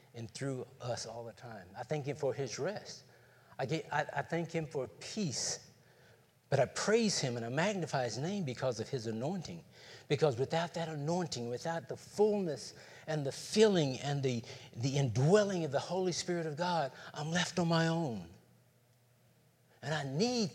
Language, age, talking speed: English, 50-69, 180 wpm